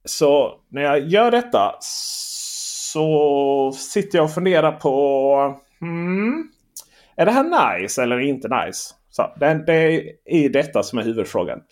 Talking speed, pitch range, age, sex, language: 140 wpm, 140-200 Hz, 30-49, male, Swedish